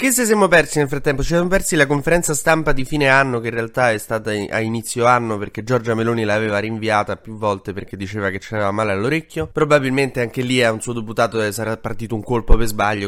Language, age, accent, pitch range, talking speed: Italian, 20-39, native, 105-130 Hz, 235 wpm